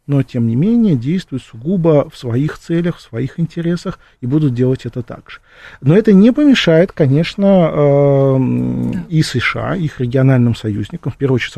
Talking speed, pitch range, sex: 160 wpm, 120-150 Hz, male